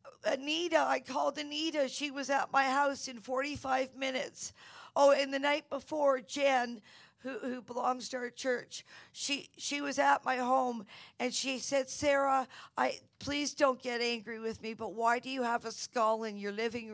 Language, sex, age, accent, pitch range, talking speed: English, female, 50-69, American, 235-270 Hz, 180 wpm